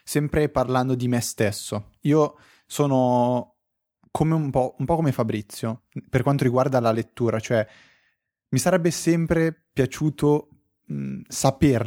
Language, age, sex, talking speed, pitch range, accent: Italian, 20-39, male, 130 wpm, 110-140 Hz, native